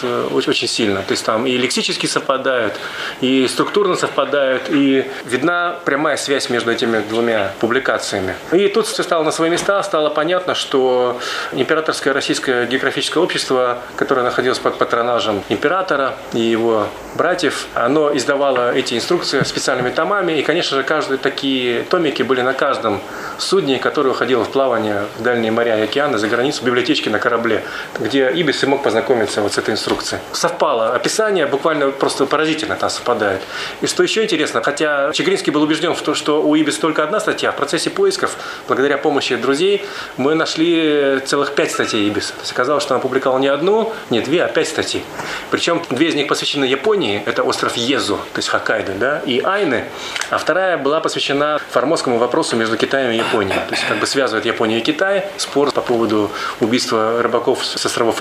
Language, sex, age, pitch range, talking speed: Russian, male, 30-49, 120-175 Hz, 175 wpm